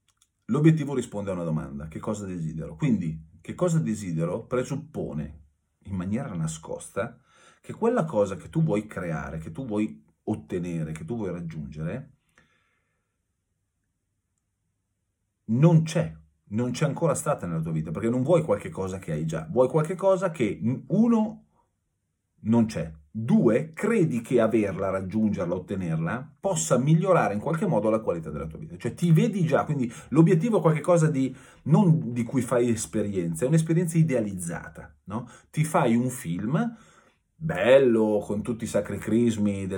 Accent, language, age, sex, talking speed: native, Italian, 40-59, male, 150 wpm